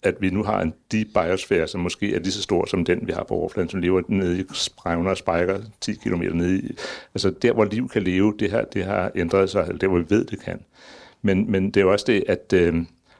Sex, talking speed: male, 260 wpm